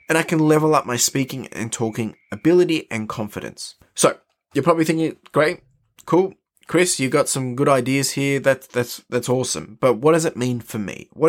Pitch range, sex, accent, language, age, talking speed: 110-150 Hz, male, Australian, English, 20-39, 190 wpm